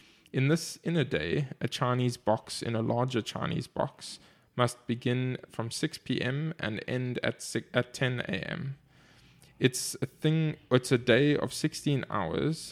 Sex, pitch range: male, 115-135 Hz